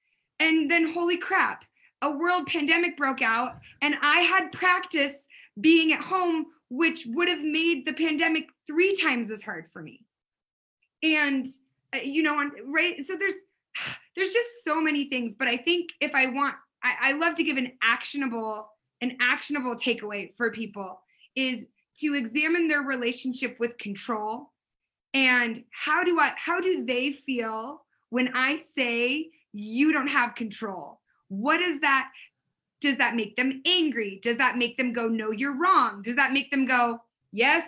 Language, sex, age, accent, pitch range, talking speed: English, female, 20-39, American, 245-335 Hz, 160 wpm